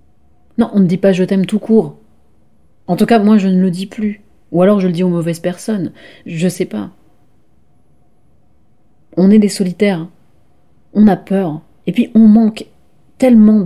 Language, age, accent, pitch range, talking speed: French, 30-49, French, 135-185 Hz, 185 wpm